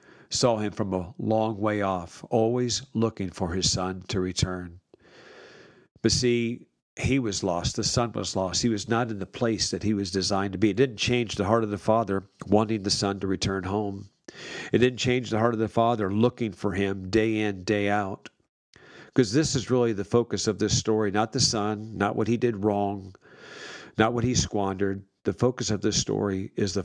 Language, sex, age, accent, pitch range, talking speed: English, male, 50-69, American, 95-115 Hz, 205 wpm